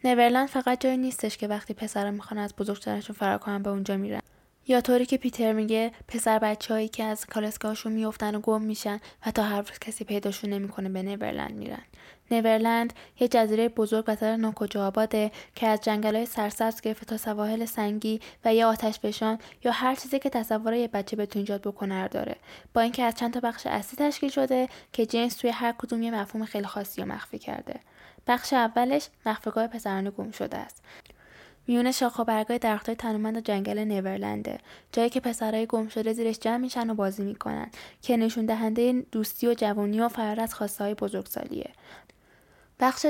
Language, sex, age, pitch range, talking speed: Persian, female, 10-29, 210-235 Hz, 170 wpm